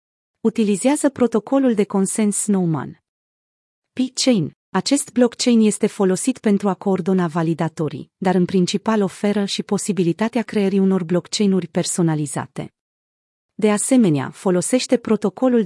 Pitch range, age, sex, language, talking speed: 175-220 Hz, 30-49, female, Romanian, 105 wpm